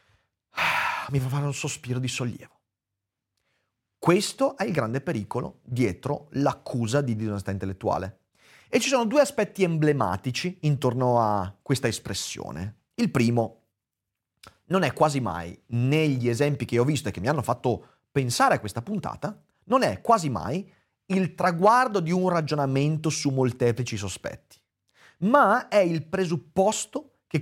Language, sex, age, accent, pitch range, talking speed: Italian, male, 30-49, native, 110-165 Hz, 140 wpm